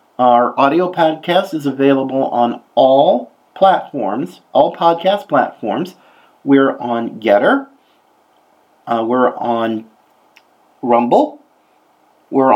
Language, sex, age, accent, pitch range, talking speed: English, male, 40-59, American, 125-185 Hz, 90 wpm